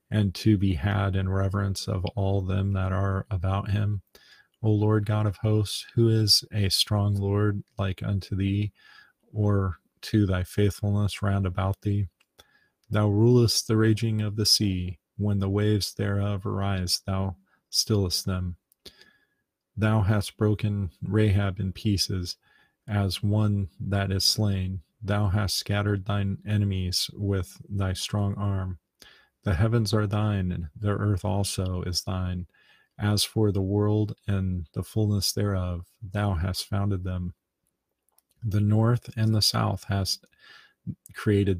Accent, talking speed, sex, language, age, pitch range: American, 140 wpm, male, English, 40-59, 95-105 Hz